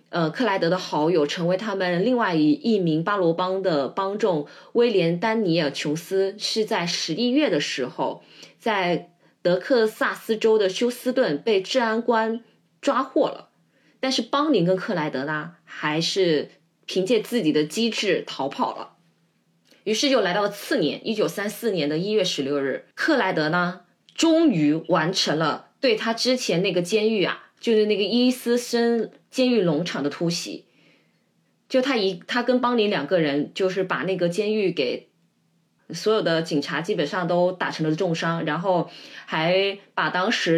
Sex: female